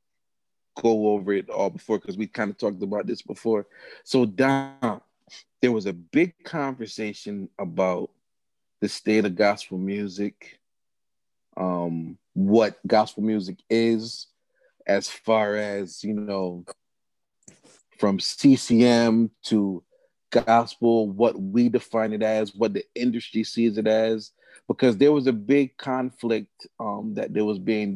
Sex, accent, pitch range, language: male, American, 100-120 Hz, English